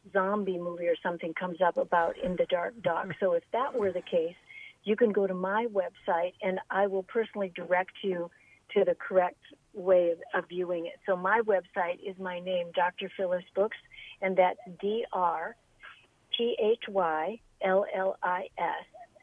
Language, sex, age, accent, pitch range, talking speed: English, female, 50-69, American, 180-215 Hz, 160 wpm